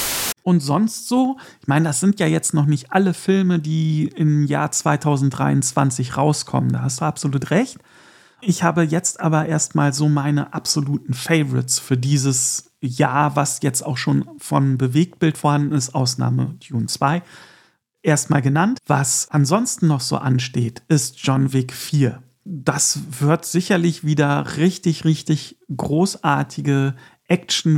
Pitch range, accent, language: 140-165 Hz, German, German